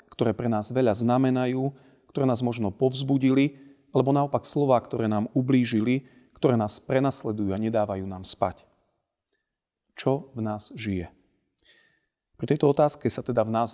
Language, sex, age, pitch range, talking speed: Slovak, male, 40-59, 105-125 Hz, 145 wpm